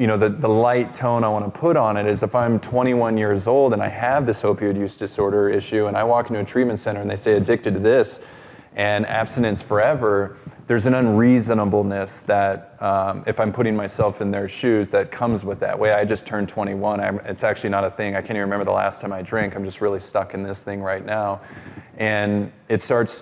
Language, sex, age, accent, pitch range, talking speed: English, male, 20-39, American, 100-110 Hz, 235 wpm